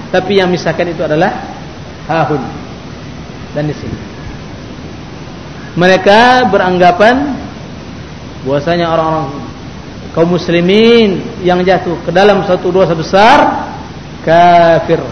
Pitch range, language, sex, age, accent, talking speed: 145-185 Hz, English, male, 40-59, Indonesian, 90 wpm